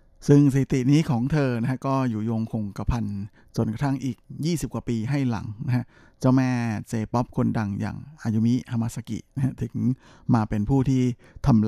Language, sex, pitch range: Thai, male, 110-130 Hz